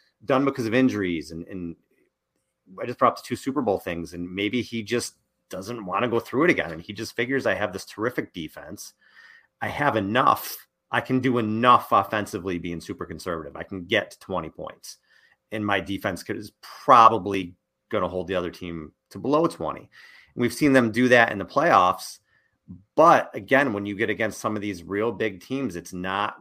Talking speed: 200 wpm